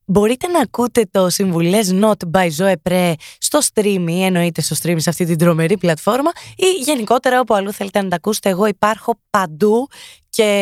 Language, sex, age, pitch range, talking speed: Greek, female, 20-39, 180-235 Hz, 175 wpm